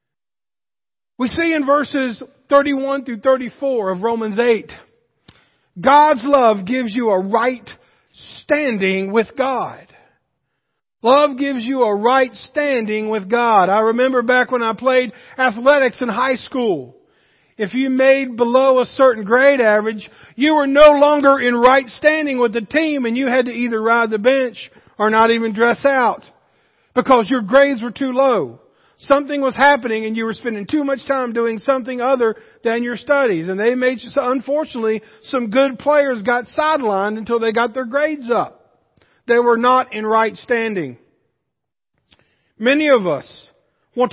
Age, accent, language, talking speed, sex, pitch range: 50-69, American, English, 160 wpm, male, 225-270 Hz